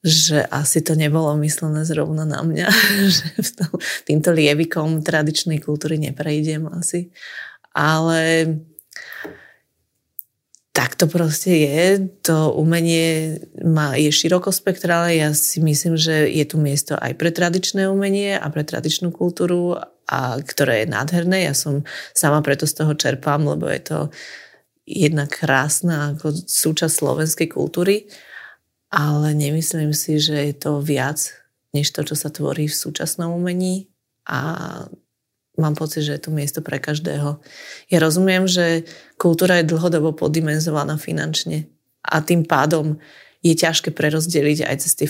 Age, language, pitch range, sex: 30-49, Slovak, 150-170 Hz, female